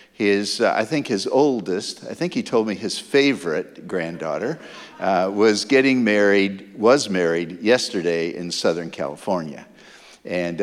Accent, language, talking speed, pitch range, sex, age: American, English, 135 wpm, 105-135 Hz, male, 50-69